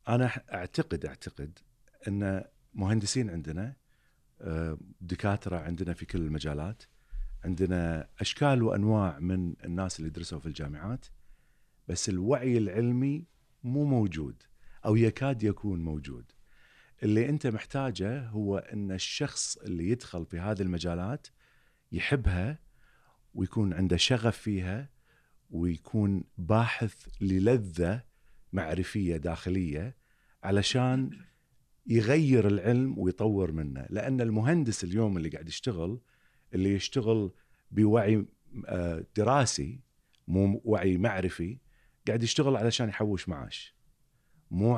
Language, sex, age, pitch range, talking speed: Arabic, male, 40-59, 90-115 Hz, 100 wpm